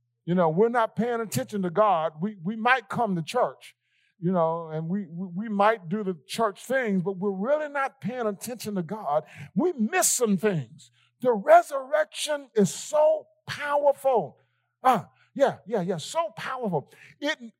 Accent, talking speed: American, 165 wpm